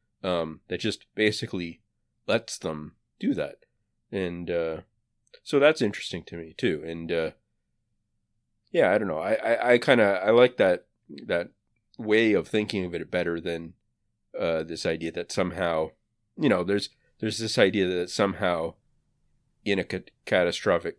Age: 30-49